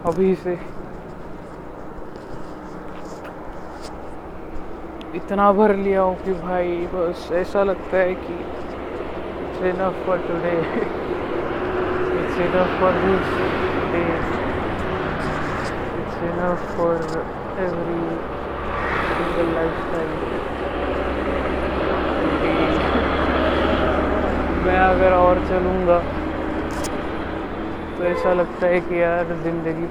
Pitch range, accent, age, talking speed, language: 165-185 Hz, native, 20-39, 55 wpm, Marathi